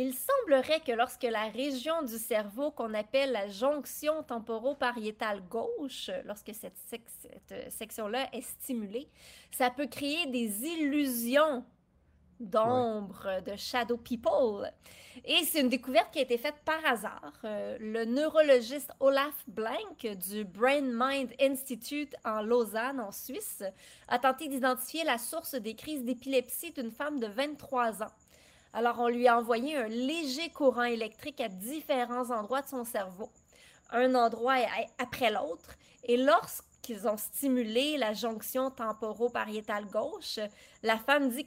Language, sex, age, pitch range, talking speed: French, female, 30-49, 225-275 Hz, 135 wpm